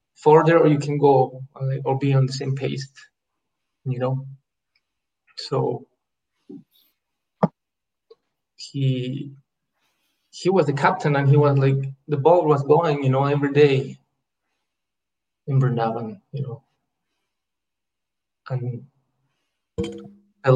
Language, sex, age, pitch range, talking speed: English, male, 20-39, 130-150 Hz, 110 wpm